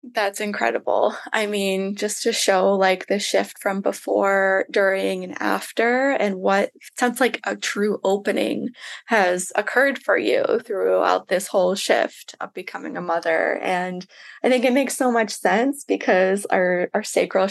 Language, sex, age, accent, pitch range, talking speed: English, female, 20-39, American, 190-250 Hz, 160 wpm